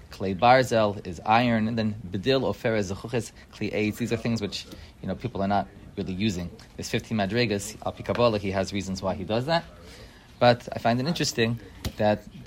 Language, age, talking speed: English, 30-49, 180 wpm